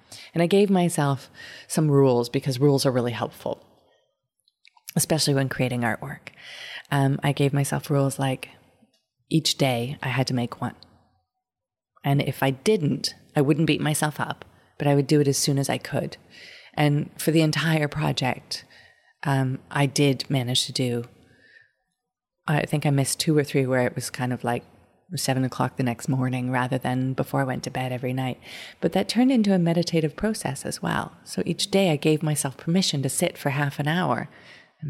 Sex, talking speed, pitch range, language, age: female, 185 wpm, 135-170 Hz, English, 30-49